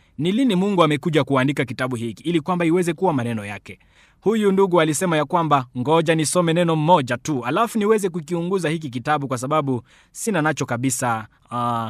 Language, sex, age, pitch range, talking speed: Swahili, male, 20-39, 135-185 Hz, 175 wpm